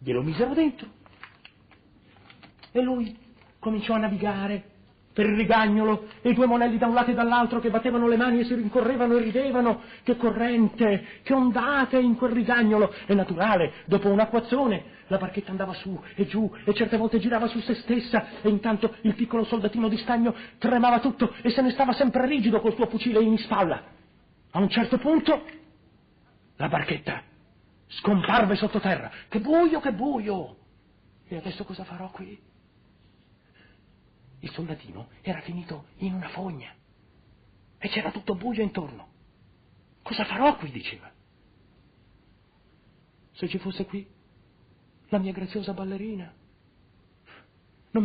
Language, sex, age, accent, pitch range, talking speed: Italian, male, 40-59, native, 180-235 Hz, 145 wpm